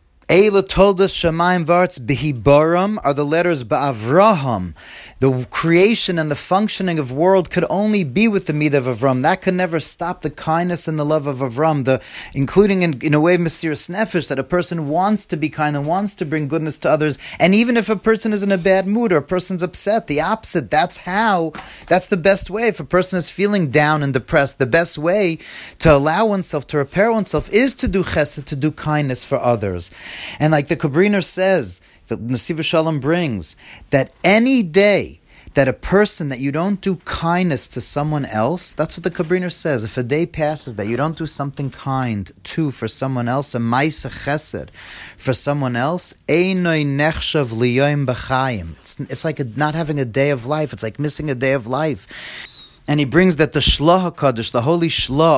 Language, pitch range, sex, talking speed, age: English, 135-180 Hz, male, 195 wpm, 30-49